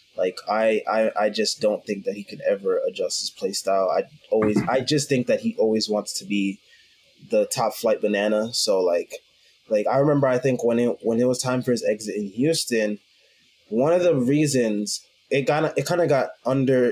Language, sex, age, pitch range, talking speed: English, male, 20-39, 110-145 Hz, 210 wpm